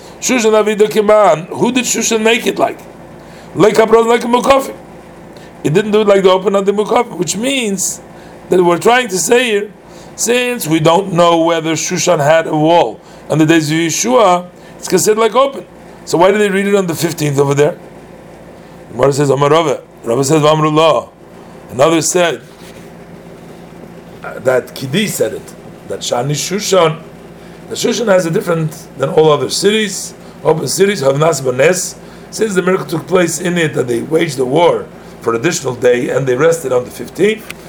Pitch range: 150-195 Hz